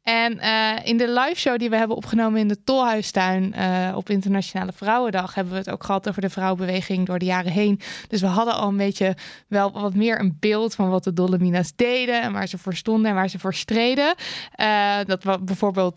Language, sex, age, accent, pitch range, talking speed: Dutch, female, 20-39, Dutch, 185-230 Hz, 220 wpm